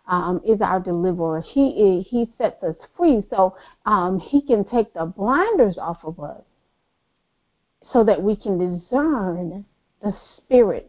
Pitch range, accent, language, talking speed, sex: 175-215 Hz, American, English, 145 wpm, female